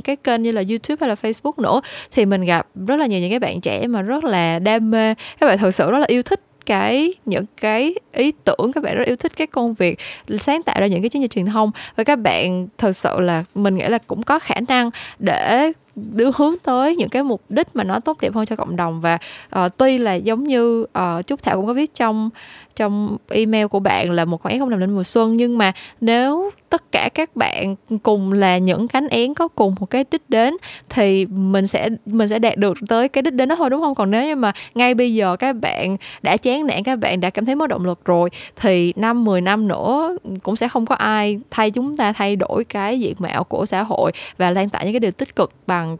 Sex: female